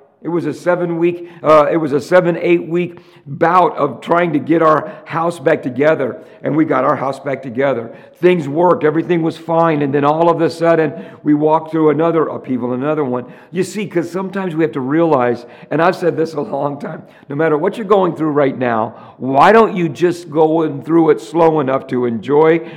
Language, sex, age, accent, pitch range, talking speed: English, male, 50-69, American, 140-175 Hz, 205 wpm